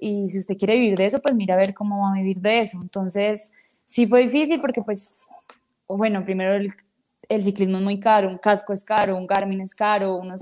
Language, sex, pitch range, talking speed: Spanish, female, 195-225 Hz, 230 wpm